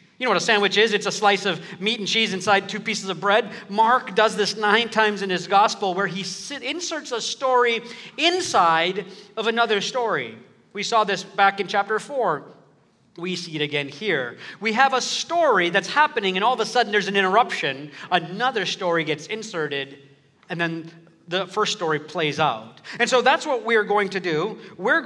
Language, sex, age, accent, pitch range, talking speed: English, male, 40-59, American, 160-215 Hz, 195 wpm